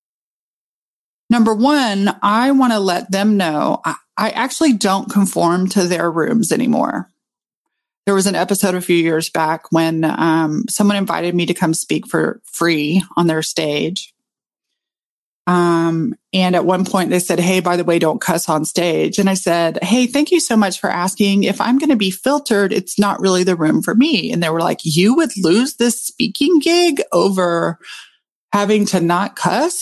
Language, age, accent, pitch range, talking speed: English, 30-49, American, 175-225 Hz, 180 wpm